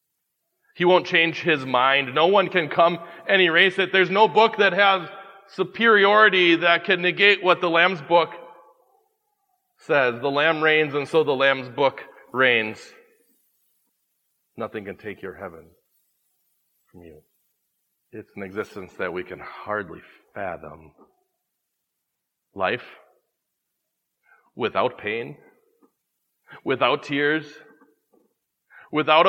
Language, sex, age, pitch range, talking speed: English, male, 40-59, 145-190 Hz, 115 wpm